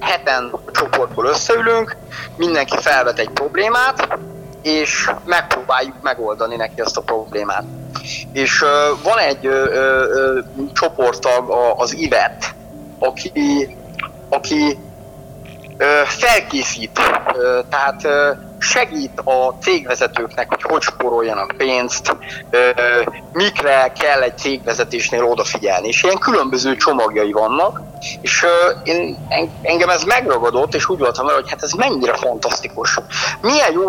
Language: Hungarian